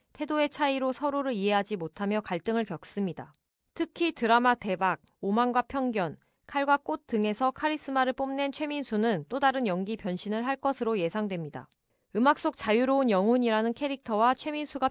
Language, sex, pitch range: Korean, female, 200-265 Hz